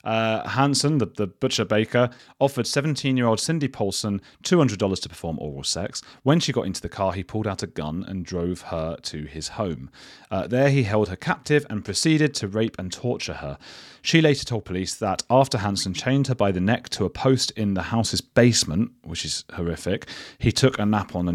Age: 30-49